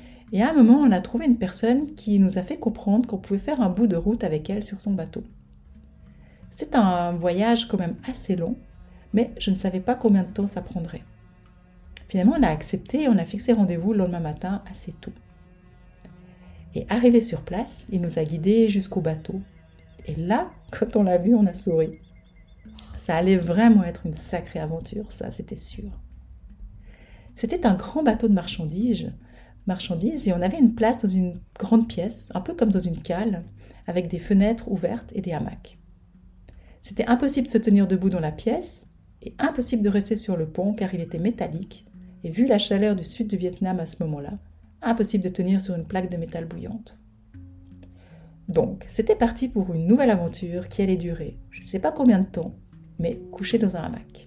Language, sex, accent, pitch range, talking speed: French, female, French, 160-220 Hz, 195 wpm